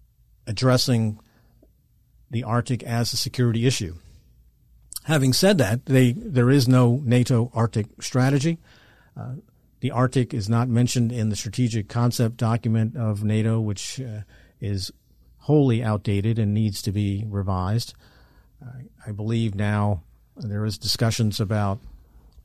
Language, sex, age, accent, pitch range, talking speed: English, male, 50-69, American, 105-125 Hz, 125 wpm